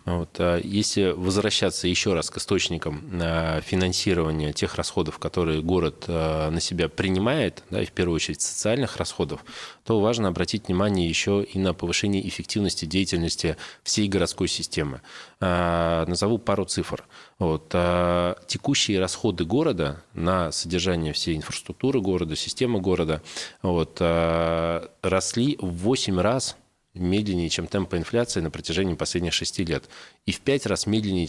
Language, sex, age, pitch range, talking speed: Russian, male, 20-39, 85-100 Hz, 130 wpm